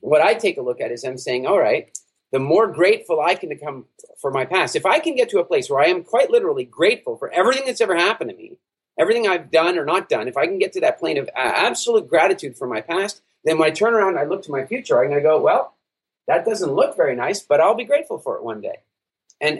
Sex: male